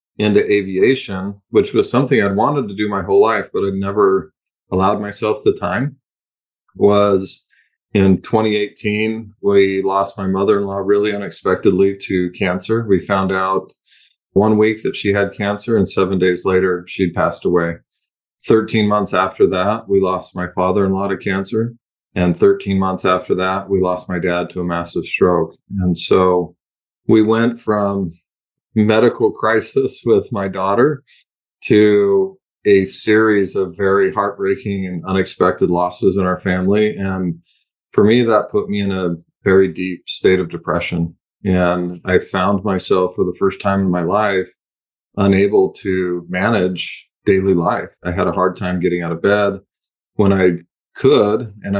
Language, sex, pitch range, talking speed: English, male, 90-105 Hz, 155 wpm